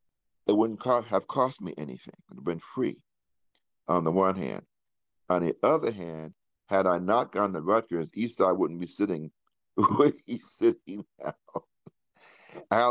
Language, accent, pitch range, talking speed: English, American, 85-100 Hz, 165 wpm